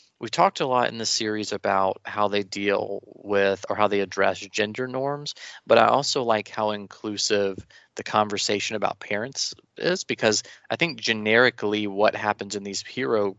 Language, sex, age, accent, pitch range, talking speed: English, male, 20-39, American, 100-120 Hz, 170 wpm